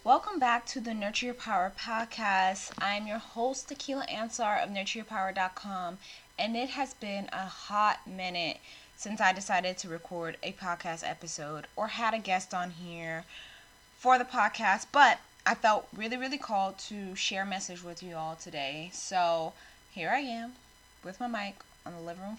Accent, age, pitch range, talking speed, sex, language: American, 20-39, 180-230 Hz, 170 wpm, female, English